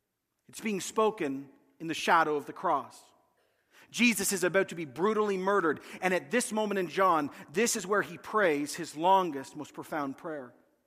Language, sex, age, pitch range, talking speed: English, male, 40-59, 165-225 Hz, 175 wpm